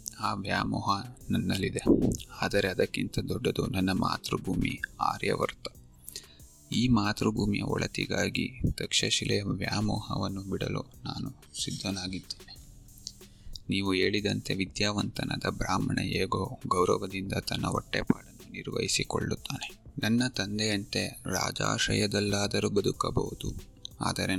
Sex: male